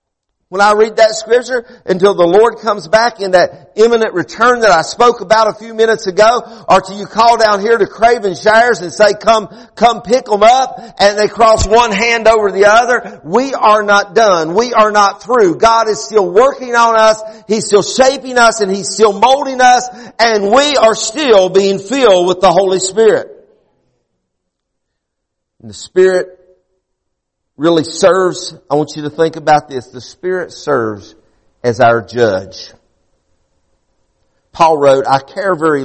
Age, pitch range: 50-69, 150-225 Hz